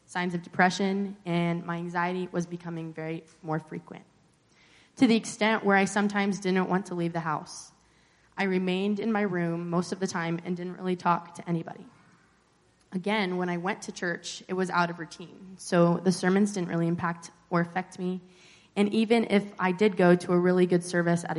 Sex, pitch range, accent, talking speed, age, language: female, 170-195 Hz, American, 195 wpm, 20-39, English